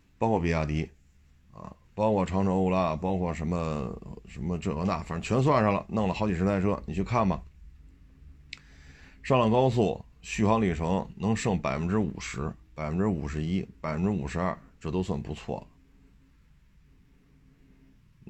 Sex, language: male, Chinese